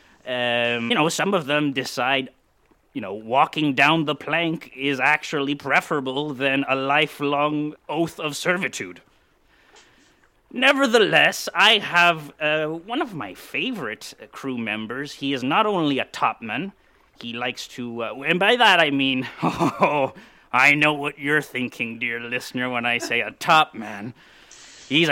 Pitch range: 130-175 Hz